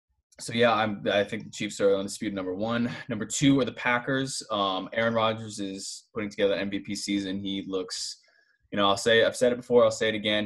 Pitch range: 100-125 Hz